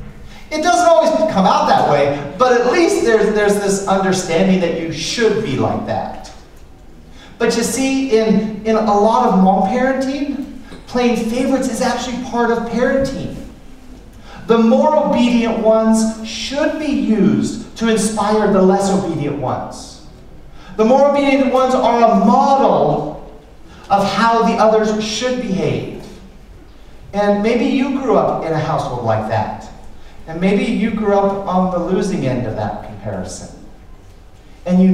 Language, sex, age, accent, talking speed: English, male, 40-59, American, 150 wpm